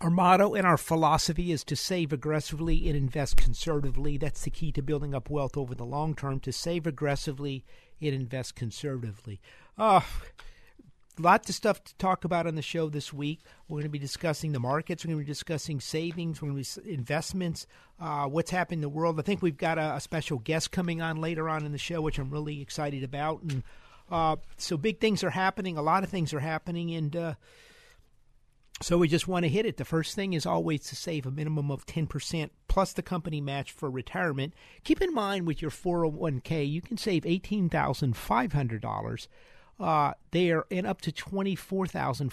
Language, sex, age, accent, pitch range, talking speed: English, male, 50-69, American, 145-175 Hz, 215 wpm